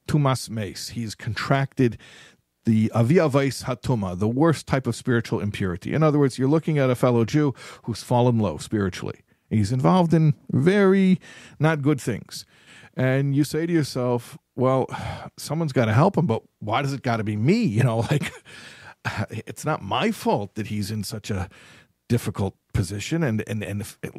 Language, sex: English, male